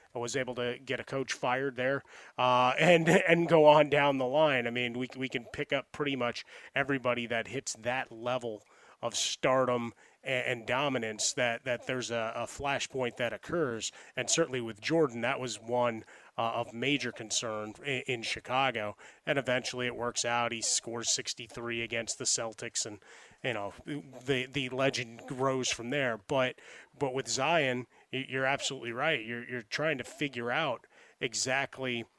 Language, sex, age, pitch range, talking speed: English, male, 30-49, 120-145 Hz, 170 wpm